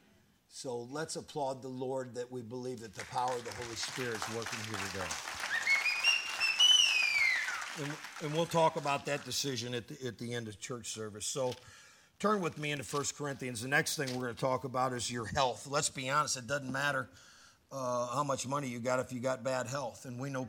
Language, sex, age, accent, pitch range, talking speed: English, male, 50-69, American, 130-195 Hz, 210 wpm